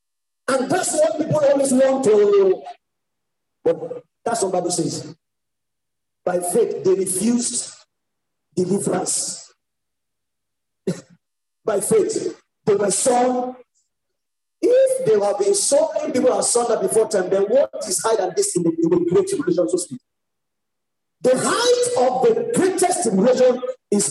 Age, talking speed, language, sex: 50-69, 135 wpm, English, male